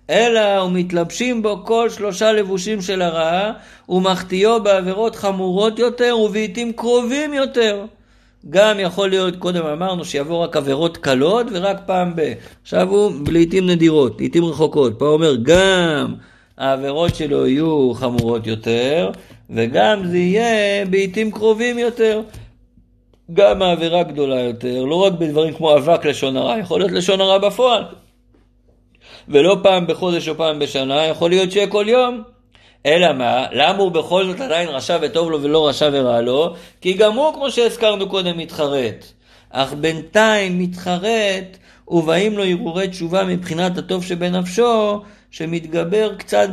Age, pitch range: 50-69, 140-205 Hz